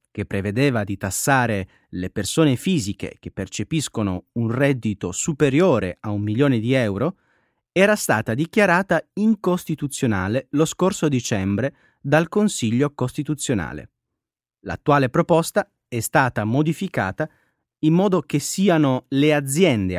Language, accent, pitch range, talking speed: Italian, native, 110-155 Hz, 115 wpm